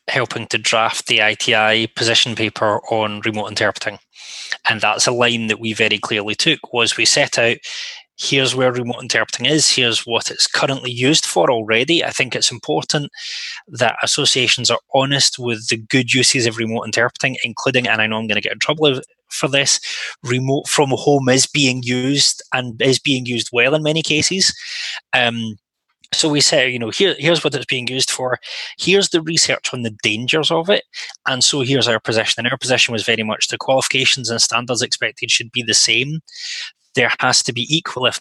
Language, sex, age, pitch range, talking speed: English, male, 20-39, 115-140 Hz, 190 wpm